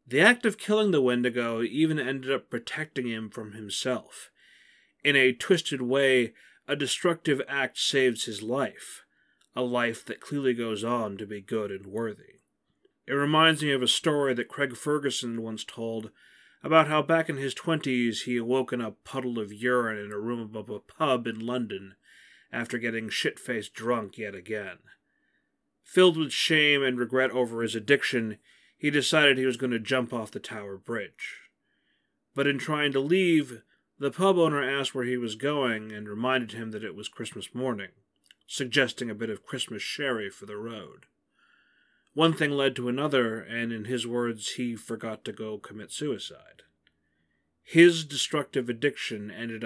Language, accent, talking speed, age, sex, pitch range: English, American, 170 wpm, 30-49, male, 115-140 Hz